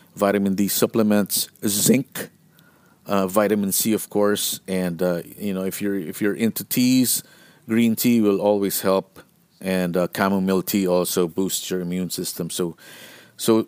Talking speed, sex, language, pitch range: 155 wpm, male, English, 95-110 Hz